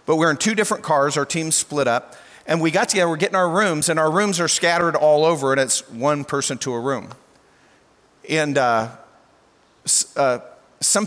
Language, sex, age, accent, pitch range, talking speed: English, male, 50-69, American, 135-175 Hz, 195 wpm